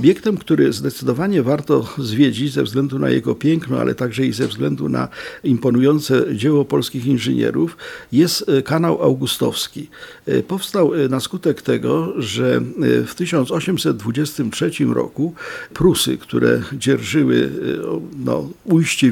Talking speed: 110 wpm